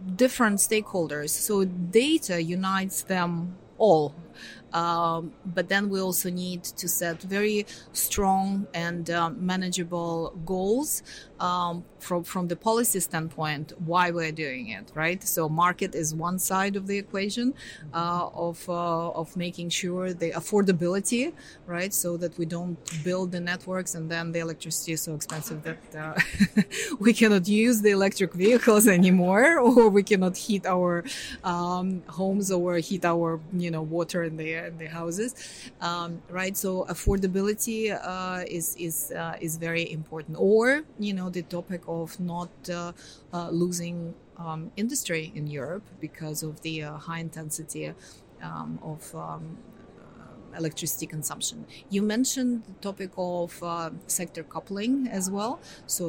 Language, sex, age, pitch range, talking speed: English, female, 30-49, 165-195 Hz, 145 wpm